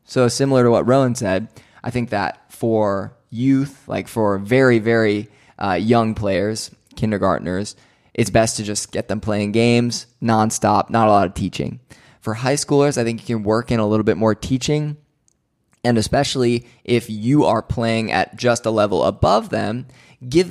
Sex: male